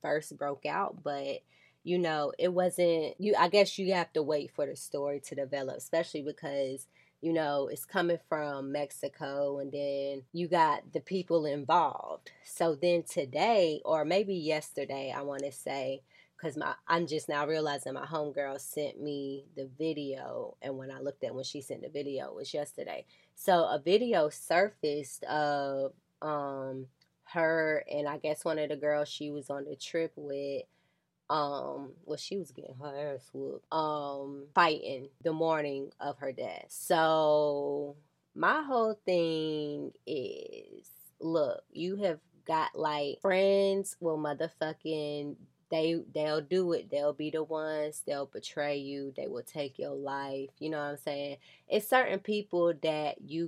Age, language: 20-39, English